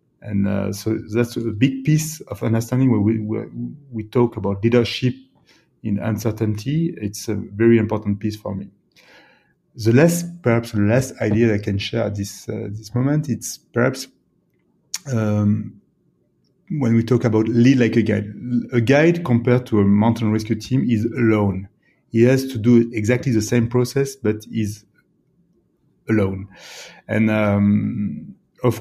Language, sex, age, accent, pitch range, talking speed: German, male, 30-49, French, 105-125 Hz, 155 wpm